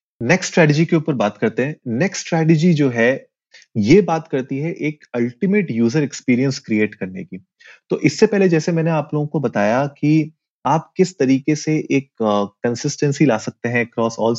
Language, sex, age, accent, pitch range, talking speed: Hindi, male, 30-49, native, 115-150 Hz, 175 wpm